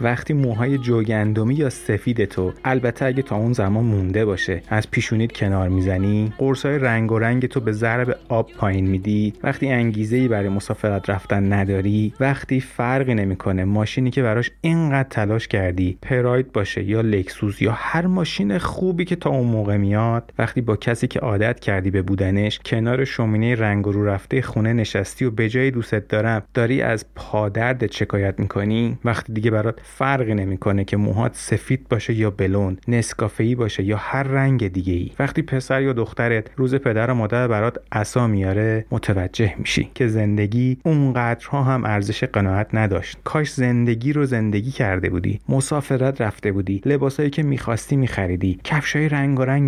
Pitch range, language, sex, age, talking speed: 105-130 Hz, Persian, male, 30-49, 160 wpm